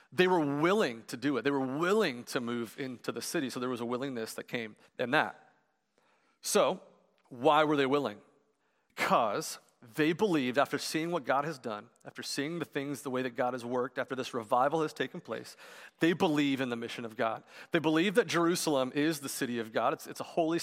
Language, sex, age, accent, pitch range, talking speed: English, male, 40-59, American, 120-155 Hz, 210 wpm